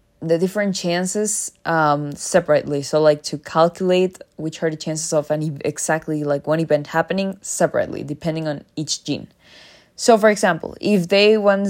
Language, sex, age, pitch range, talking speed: English, female, 20-39, 155-210 Hz, 160 wpm